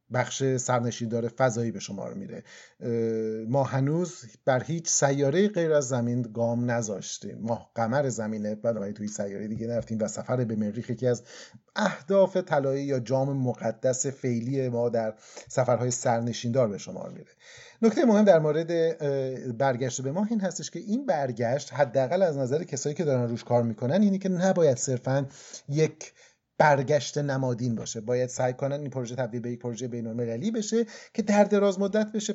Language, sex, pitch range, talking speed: Persian, male, 120-165 Hz, 165 wpm